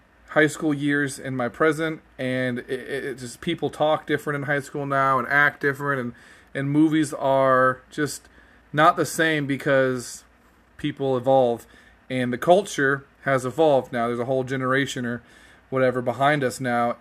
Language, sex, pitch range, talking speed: English, male, 125-145 Hz, 160 wpm